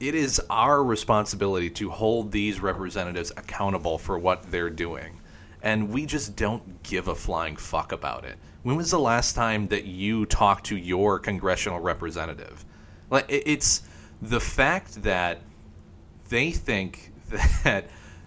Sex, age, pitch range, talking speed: male, 30-49, 90-125 Hz, 140 wpm